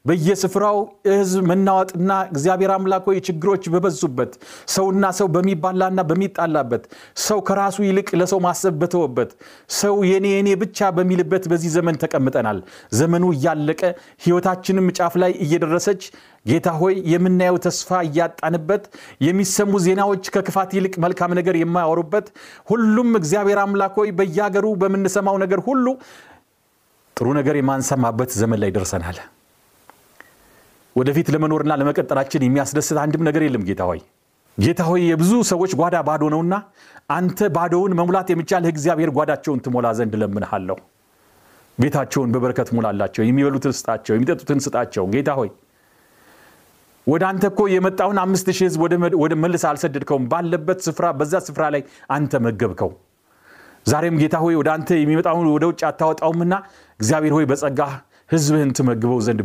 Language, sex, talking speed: Amharic, male, 110 wpm